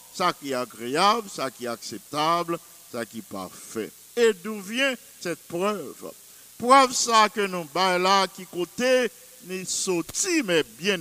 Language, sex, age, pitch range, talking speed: English, male, 50-69, 180-245 Hz, 145 wpm